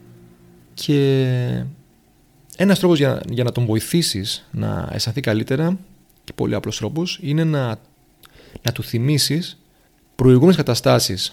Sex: male